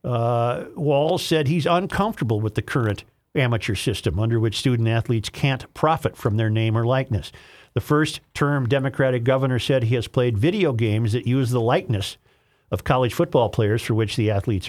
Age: 50-69